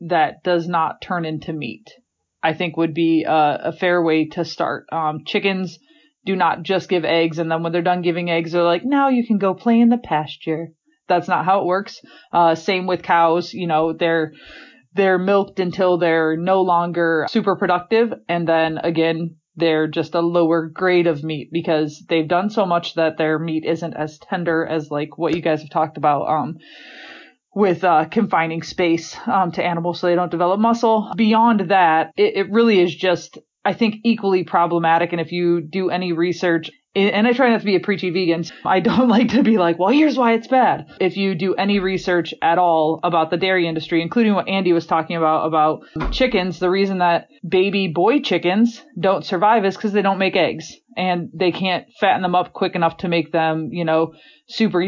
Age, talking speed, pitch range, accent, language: 20-39, 205 wpm, 165-195 Hz, American, English